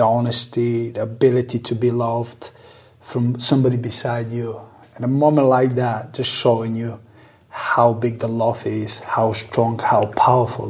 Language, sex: English, male